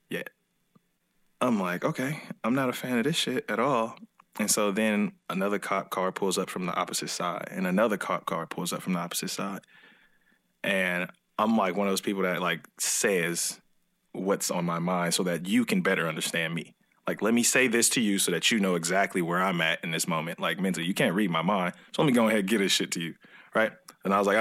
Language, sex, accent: English, male, American